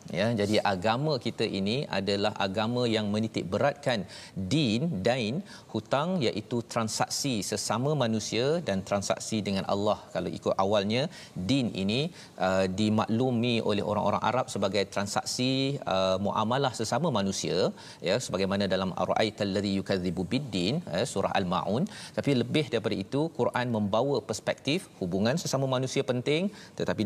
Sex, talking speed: male, 125 wpm